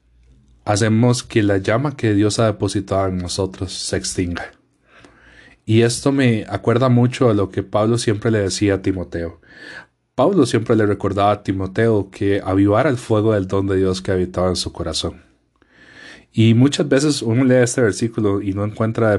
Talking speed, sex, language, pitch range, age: 170 wpm, male, Spanish, 95-115 Hz, 30-49